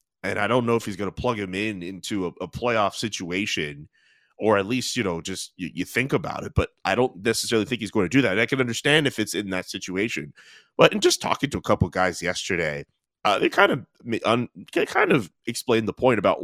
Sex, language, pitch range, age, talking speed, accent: male, English, 95-125 Hz, 30-49, 245 wpm, American